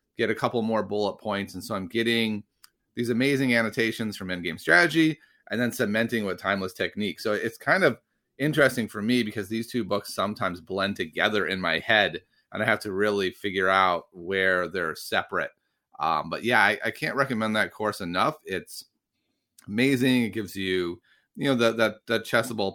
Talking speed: 185 wpm